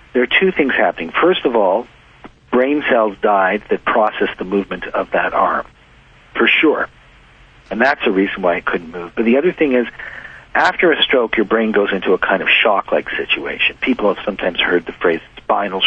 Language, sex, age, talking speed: English, male, 50-69, 195 wpm